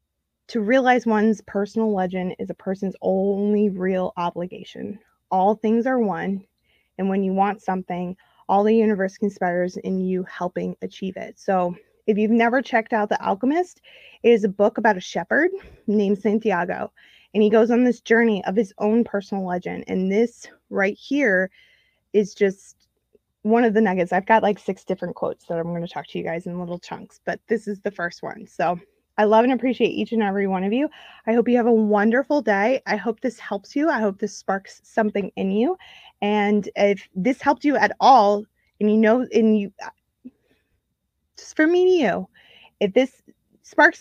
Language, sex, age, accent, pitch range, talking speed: English, female, 20-39, American, 190-235 Hz, 190 wpm